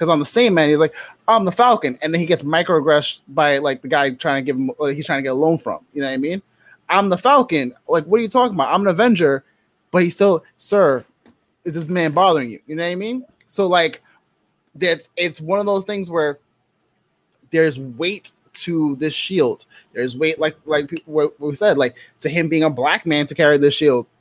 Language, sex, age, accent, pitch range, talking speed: English, male, 20-39, American, 145-190 Hz, 240 wpm